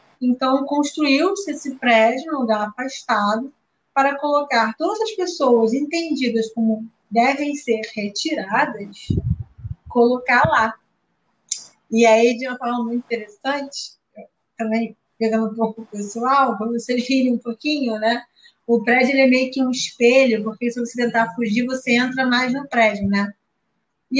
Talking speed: 145 wpm